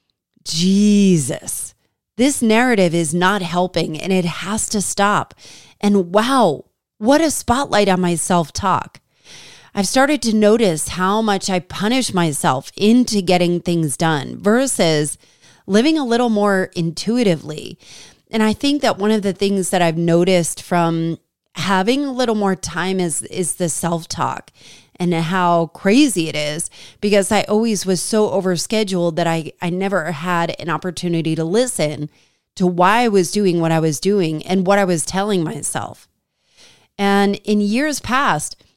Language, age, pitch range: English, 30-49, 170-215 Hz